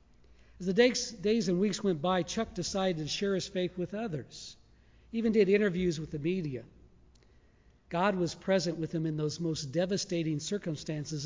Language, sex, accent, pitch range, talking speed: English, male, American, 140-195 Hz, 170 wpm